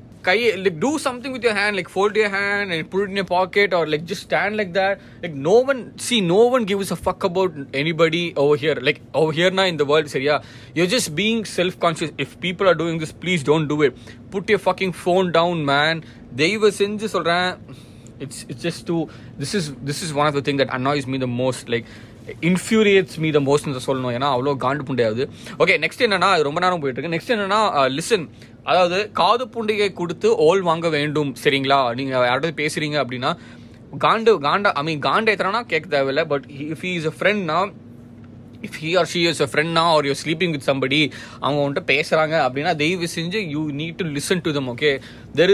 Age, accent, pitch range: 20-39, native, 140-185 Hz